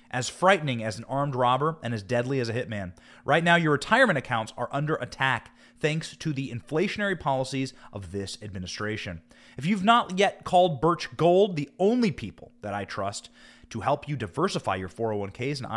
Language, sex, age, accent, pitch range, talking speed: English, male, 30-49, American, 115-175 Hz, 185 wpm